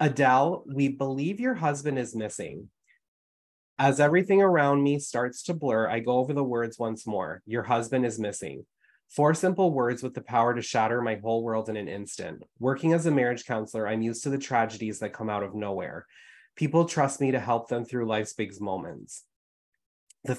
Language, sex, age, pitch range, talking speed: English, male, 20-39, 110-135 Hz, 190 wpm